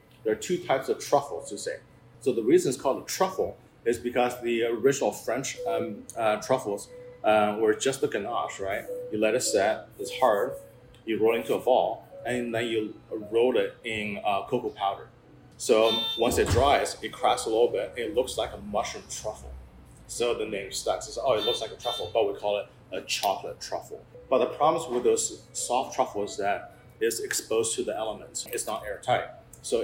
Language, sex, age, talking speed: English, male, 30-49, 205 wpm